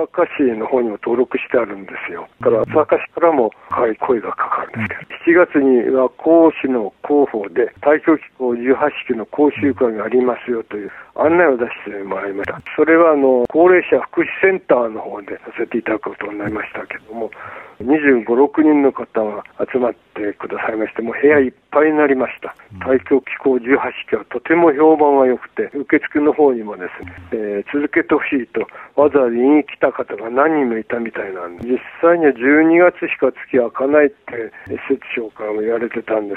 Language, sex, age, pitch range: Japanese, male, 60-79, 115-150 Hz